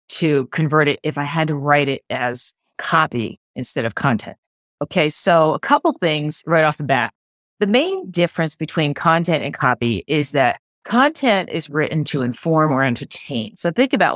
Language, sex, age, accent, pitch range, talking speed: English, female, 30-49, American, 145-180 Hz, 180 wpm